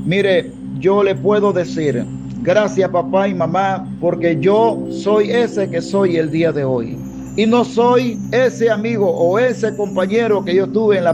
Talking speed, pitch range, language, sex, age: 175 wpm, 140-180 Hz, Spanish, male, 50-69